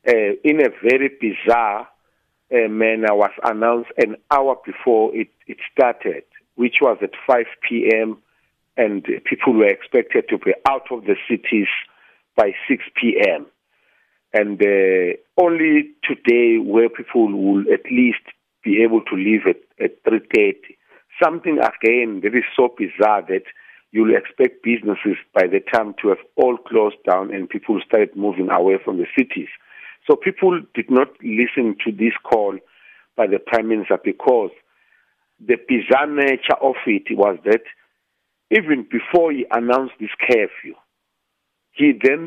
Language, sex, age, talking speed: English, male, 50-69, 145 wpm